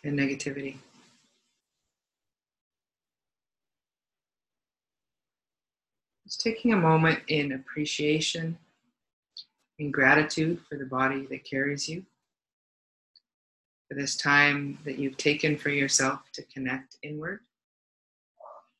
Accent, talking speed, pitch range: American, 85 wpm, 140-165 Hz